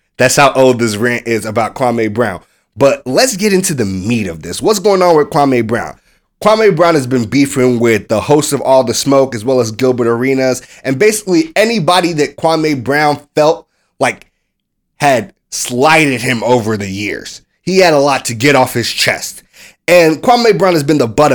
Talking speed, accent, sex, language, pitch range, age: 195 wpm, American, male, English, 120-155 Hz, 30-49